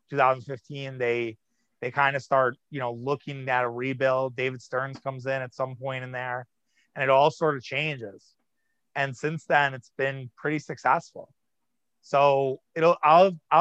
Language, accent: English, American